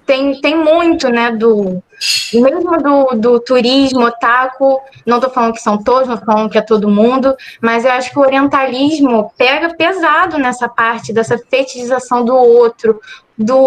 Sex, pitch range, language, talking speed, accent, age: female, 235-290 Hz, Portuguese, 165 wpm, Brazilian, 10-29